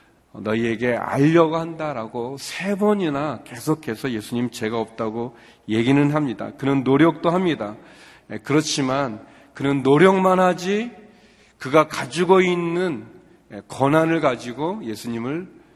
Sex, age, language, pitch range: male, 40-59, Korean, 120-155 Hz